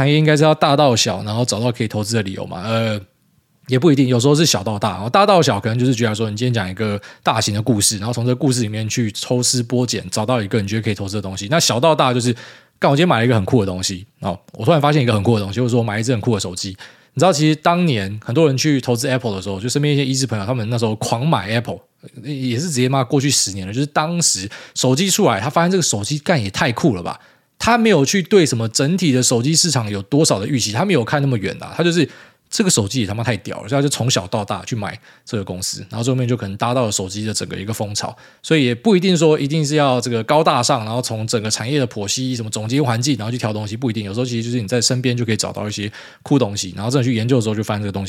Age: 20-39